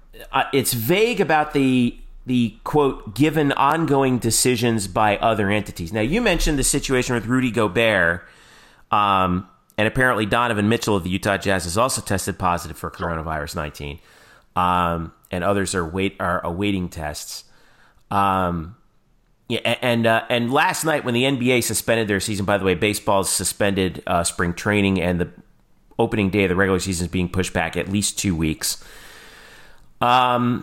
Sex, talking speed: male, 165 wpm